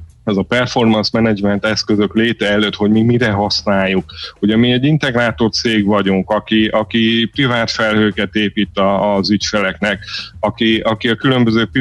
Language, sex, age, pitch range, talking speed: Hungarian, male, 30-49, 100-115 Hz, 140 wpm